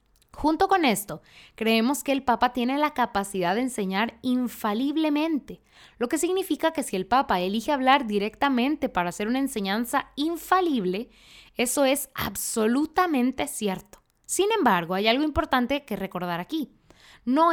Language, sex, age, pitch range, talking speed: Spanish, female, 20-39, 210-300 Hz, 140 wpm